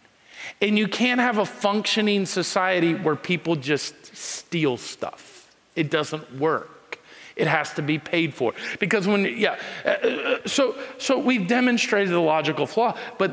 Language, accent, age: English, American, 40-59